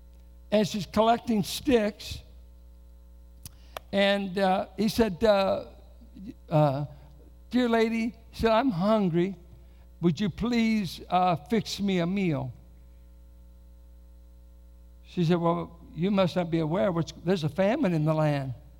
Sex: male